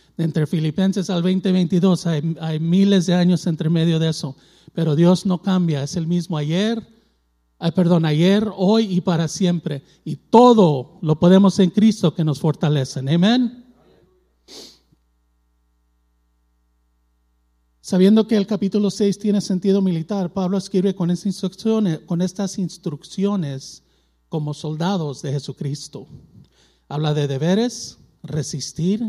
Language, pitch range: Spanish, 140-185 Hz